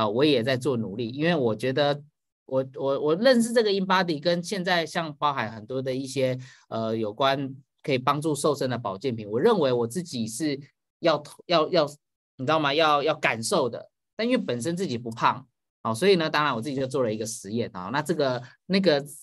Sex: male